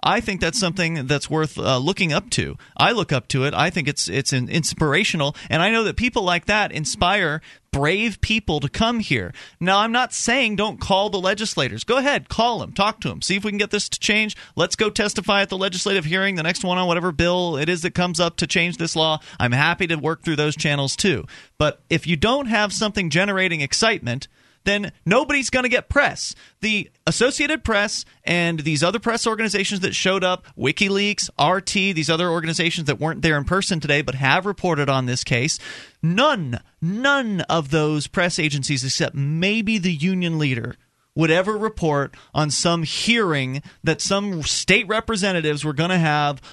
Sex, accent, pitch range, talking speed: male, American, 150-205 Hz, 200 wpm